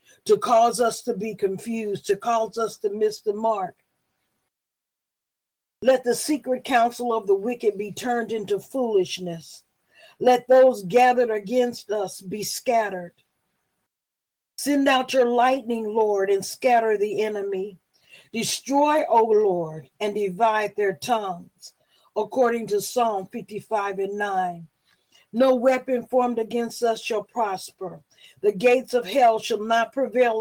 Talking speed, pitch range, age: 130 wpm, 205-245 Hz, 50-69